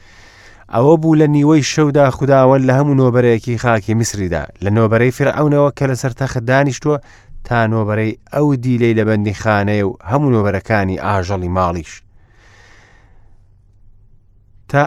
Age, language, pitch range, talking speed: 30-49, English, 100-130 Hz, 115 wpm